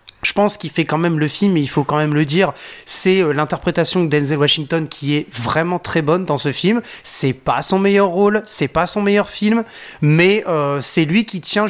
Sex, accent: male, French